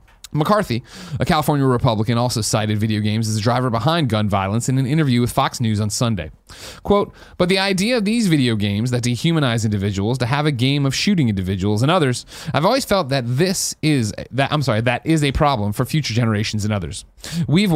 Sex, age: male, 30-49